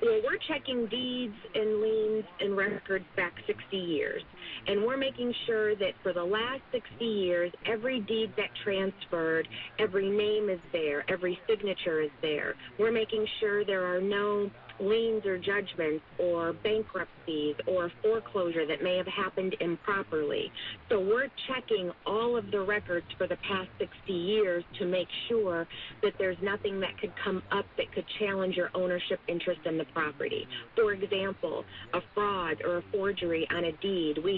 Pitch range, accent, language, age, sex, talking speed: 170-210 Hz, American, English, 40-59, female, 160 wpm